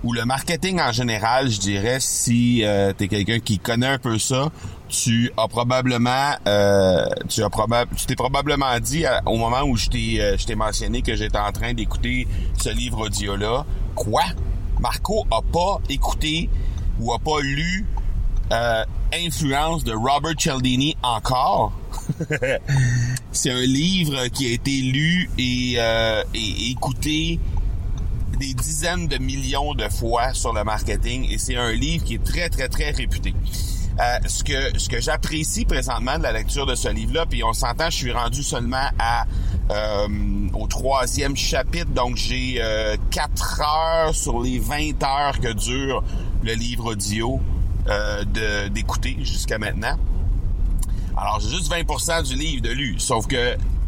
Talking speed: 165 wpm